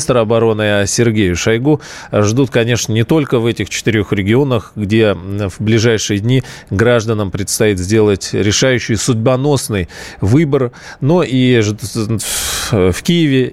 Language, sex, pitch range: Russian, male, 95-120 Hz